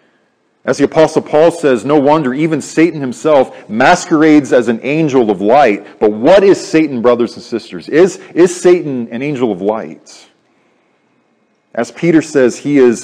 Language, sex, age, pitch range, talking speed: English, male, 40-59, 120-155 Hz, 160 wpm